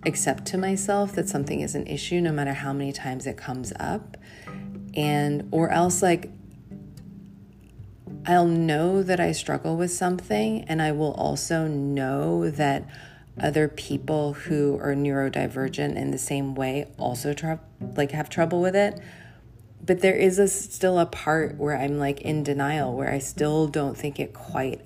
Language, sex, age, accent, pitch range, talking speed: English, female, 30-49, American, 135-175 Hz, 165 wpm